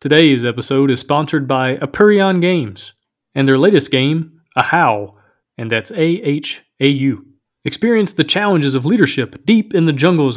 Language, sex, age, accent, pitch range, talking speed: English, male, 30-49, American, 135-180 Hz, 140 wpm